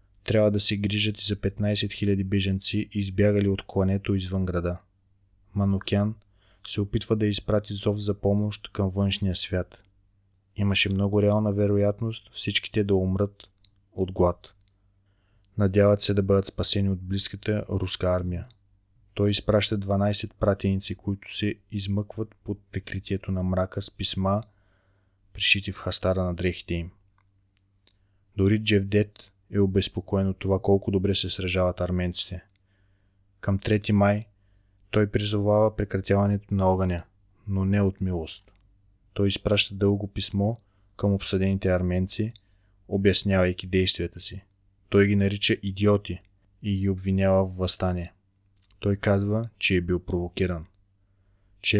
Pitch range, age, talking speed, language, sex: 95-100 Hz, 20-39, 130 wpm, Bulgarian, male